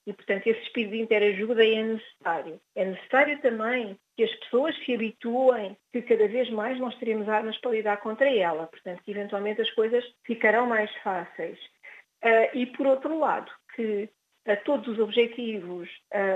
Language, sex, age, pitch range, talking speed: Portuguese, female, 50-69, 215-250 Hz, 160 wpm